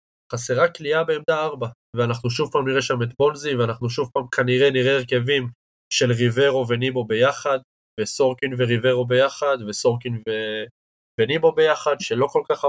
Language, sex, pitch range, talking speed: Hebrew, male, 115-135 Hz, 145 wpm